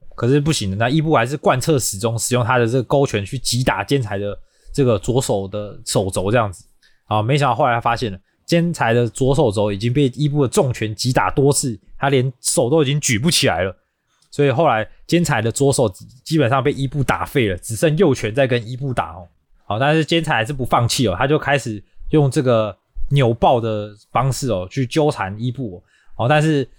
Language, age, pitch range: Chinese, 20-39, 110-150 Hz